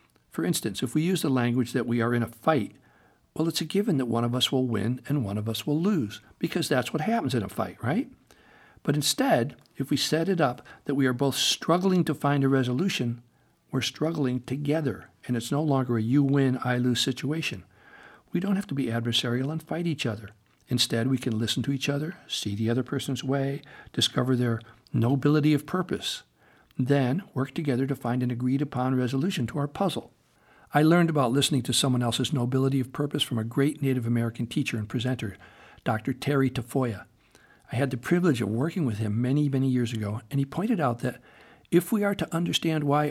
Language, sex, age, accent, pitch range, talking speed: English, male, 60-79, American, 120-145 Hz, 205 wpm